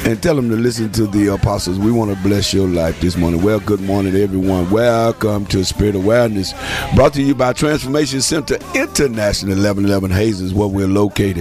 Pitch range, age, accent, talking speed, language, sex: 80-100 Hz, 50-69, American, 190 wpm, English, male